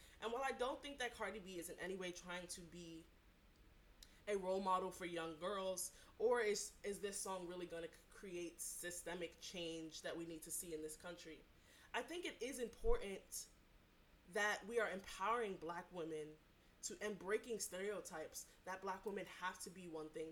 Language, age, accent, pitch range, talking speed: English, 20-39, American, 165-215 Hz, 185 wpm